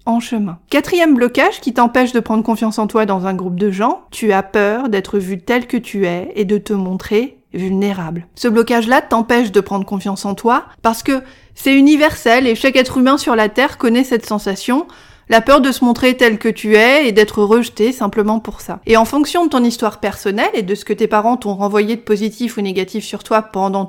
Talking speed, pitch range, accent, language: 225 wpm, 205-255 Hz, French, French